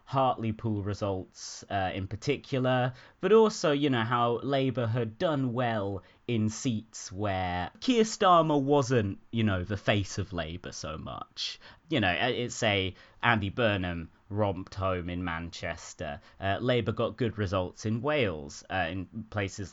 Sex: male